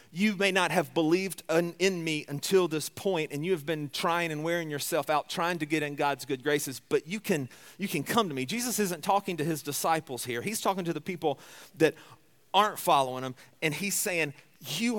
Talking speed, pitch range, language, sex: 215 wpm, 140-180 Hz, English, male